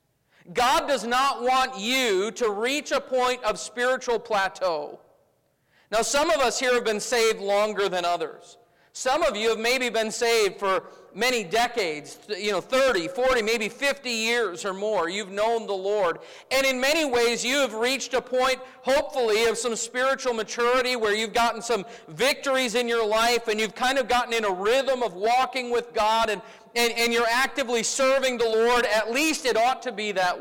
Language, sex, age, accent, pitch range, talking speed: English, male, 40-59, American, 220-260 Hz, 185 wpm